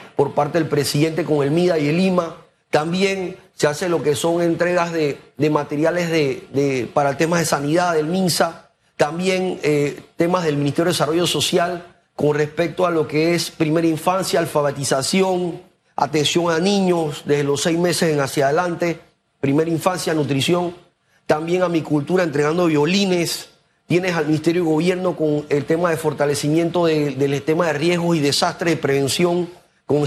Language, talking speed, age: Spanish, 170 wpm, 30-49